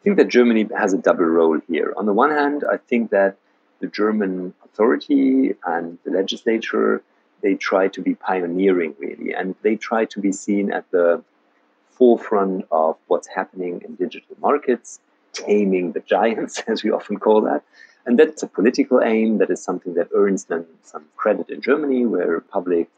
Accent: German